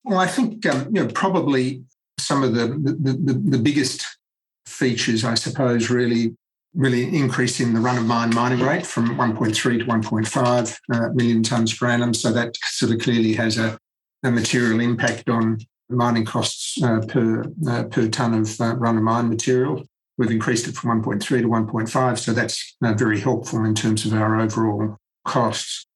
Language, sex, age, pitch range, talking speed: English, male, 50-69, 110-125 Hz, 185 wpm